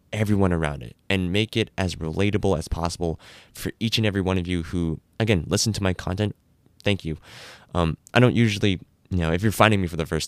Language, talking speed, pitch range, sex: English, 220 wpm, 85-100 Hz, male